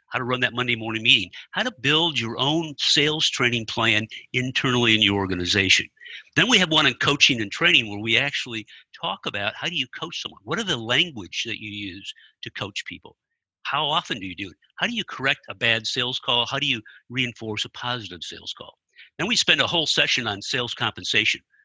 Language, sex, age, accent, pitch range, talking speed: English, male, 50-69, American, 110-135 Hz, 215 wpm